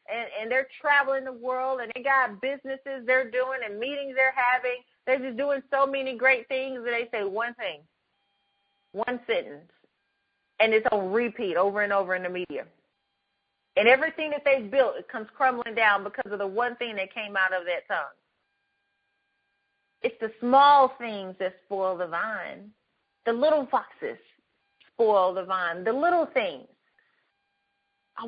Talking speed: 165 wpm